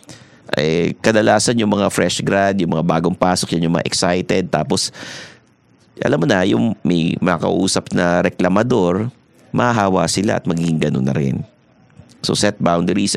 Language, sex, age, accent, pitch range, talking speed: English, male, 50-69, Filipino, 95-120 Hz, 150 wpm